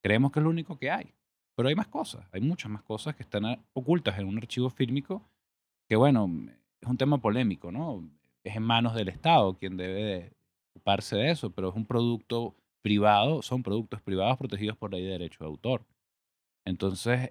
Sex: male